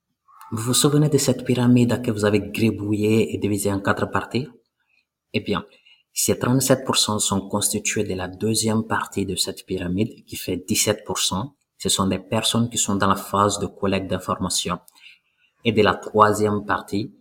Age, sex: 30-49, male